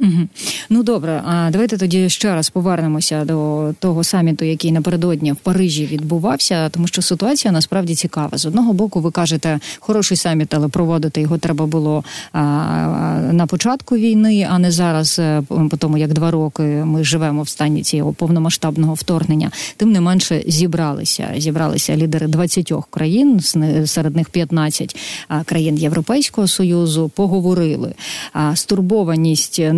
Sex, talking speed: female, 130 wpm